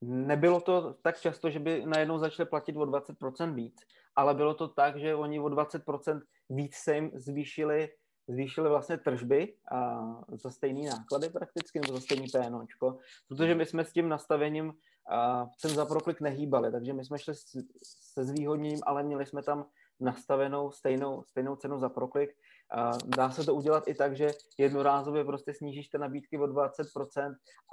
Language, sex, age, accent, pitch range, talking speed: Czech, male, 20-39, native, 135-150 Hz, 160 wpm